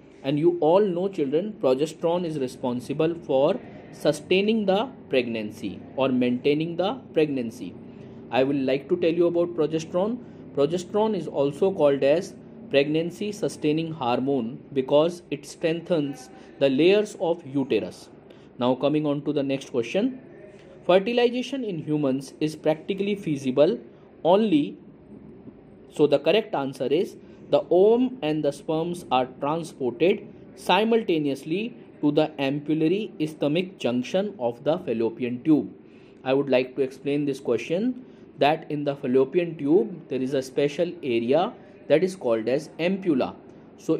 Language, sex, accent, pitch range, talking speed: English, male, Indian, 135-185 Hz, 135 wpm